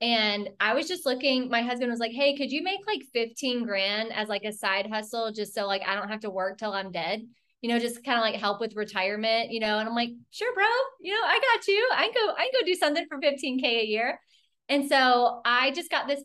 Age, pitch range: 20-39, 205-255 Hz